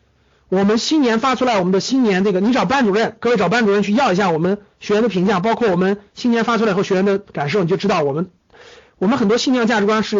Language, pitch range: Chinese, 195-255 Hz